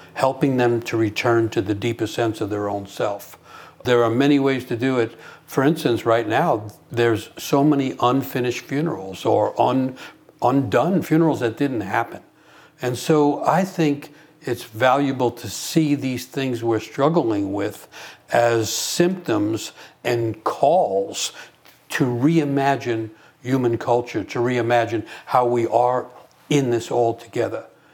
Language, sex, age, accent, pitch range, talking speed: English, male, 60-79, American, 115-140 Hz, 135 wpm